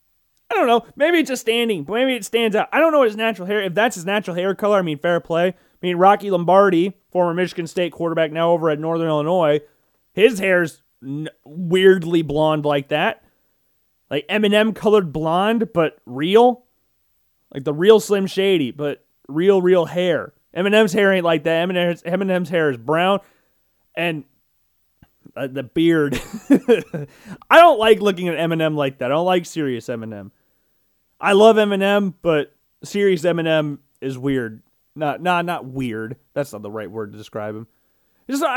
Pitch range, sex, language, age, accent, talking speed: 150-220 Hz, male, English, 30-49, American, 175 wpm